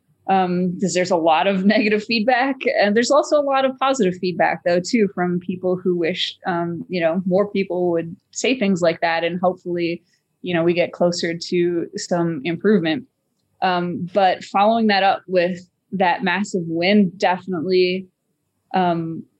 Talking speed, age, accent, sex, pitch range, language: 165 wpm, 20-39, American, female, 175-205 Hz, English